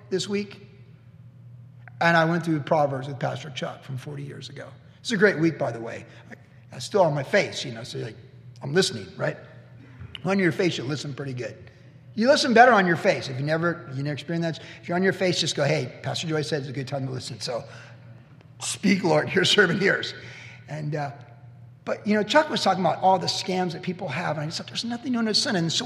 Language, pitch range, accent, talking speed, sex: English, 125-175 Hz, American, 235 wpm, male